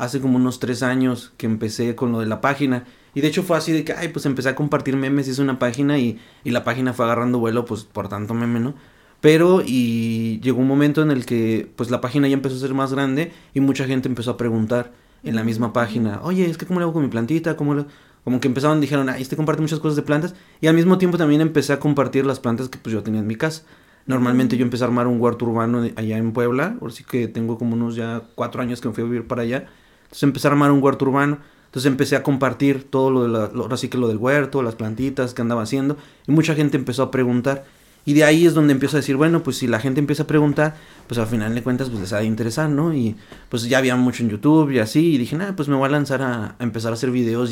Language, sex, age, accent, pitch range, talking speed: Spanish, male, 30-49, Mexican, 120-145 Hz, 275 wpm